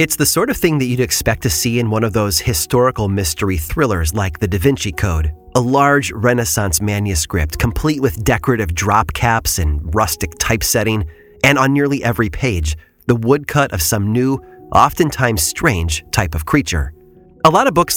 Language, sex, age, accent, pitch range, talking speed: English, male, 30-49, American, 95-140 Hz, 175 wpm